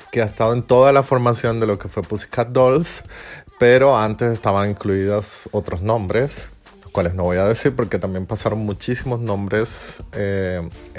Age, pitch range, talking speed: 30-49, 100-125 Hz, 170 wpm